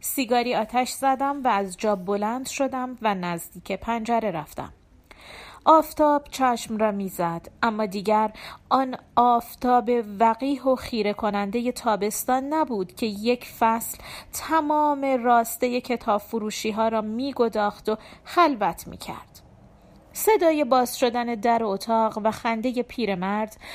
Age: 40-59